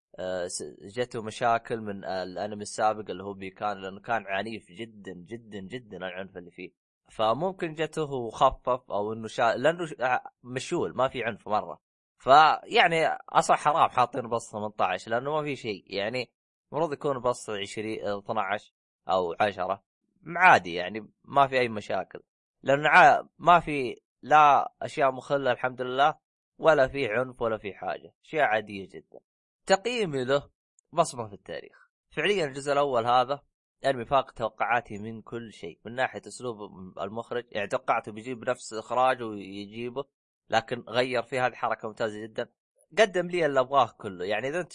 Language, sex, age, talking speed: Arabic, male, 20-39, 150 wpm